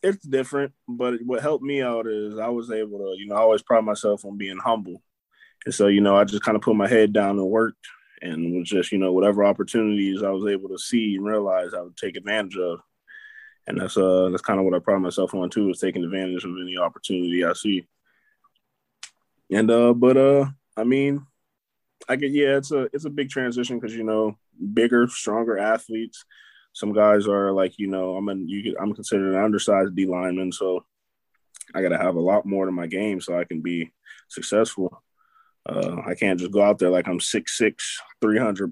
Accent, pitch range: American, 95-115 Hz